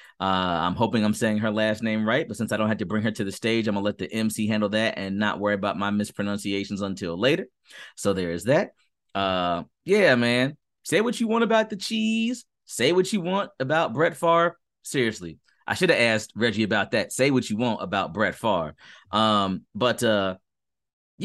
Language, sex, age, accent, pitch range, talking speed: English, male, 30-49, American, 105-155 Hz, 210 wpm